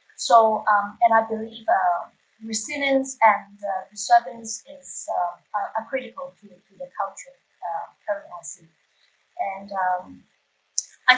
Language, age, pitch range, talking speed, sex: English, 30-49, 215-270 Hz, 140 wpm, female